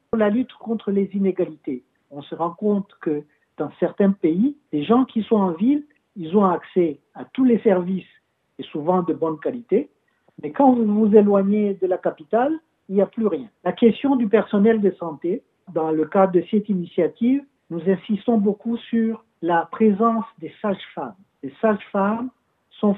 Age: 60-79